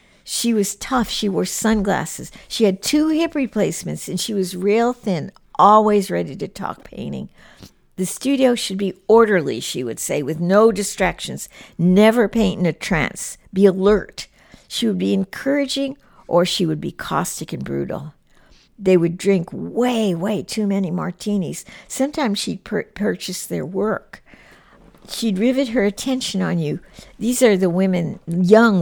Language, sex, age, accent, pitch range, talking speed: English, female, 60-79, American, 190-240 Hz, 155 wpm